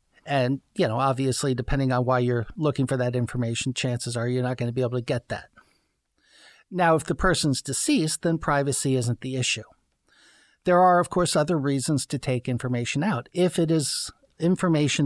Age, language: 50-69, English